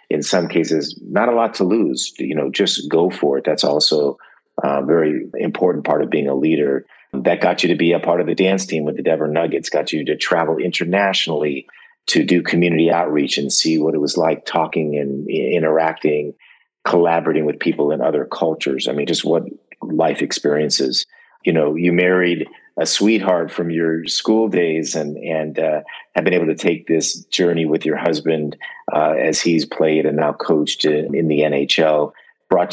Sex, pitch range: male, 75-85 Hz